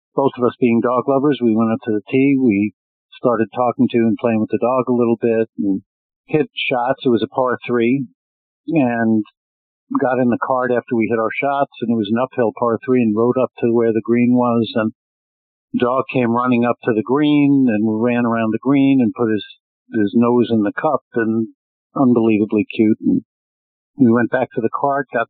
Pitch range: 110-125 Hz